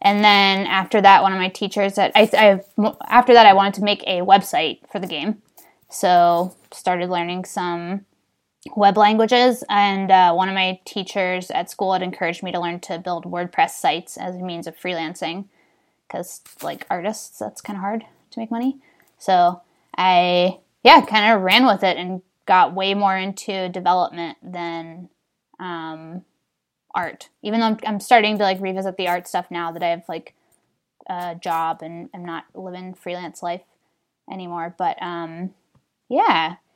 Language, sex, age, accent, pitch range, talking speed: English, female, 10-29, American, 180-210 Hz, 170 wpm